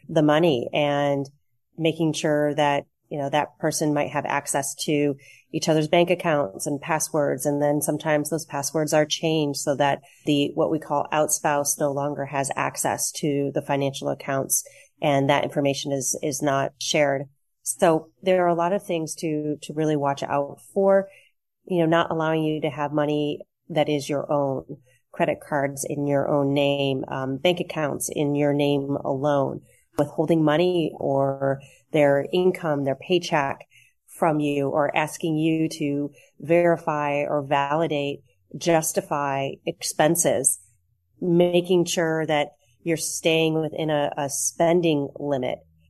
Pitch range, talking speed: 140-160 Hz, 150 wpm